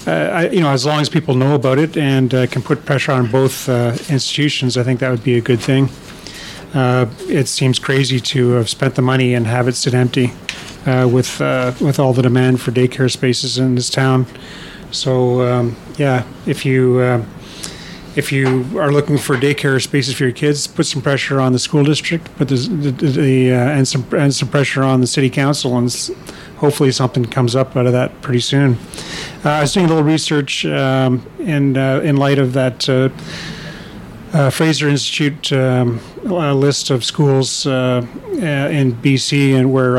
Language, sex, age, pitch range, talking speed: English, male, 40-59, 125-145 Hz, 200 wpm